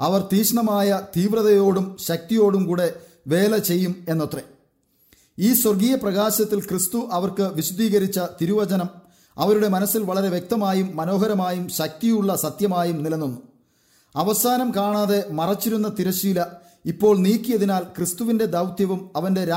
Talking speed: 130 wpm